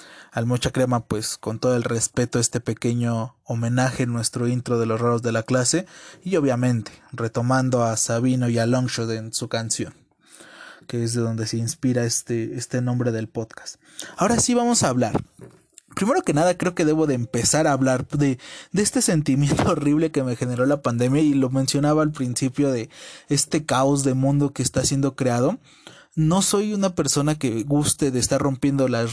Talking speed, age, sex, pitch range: 185 wpm, 20-39, male, 120-150 Hz